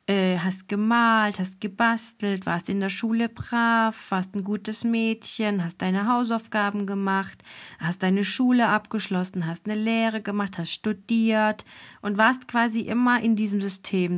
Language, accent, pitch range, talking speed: German, German, 185-220 Hz, 145 wpm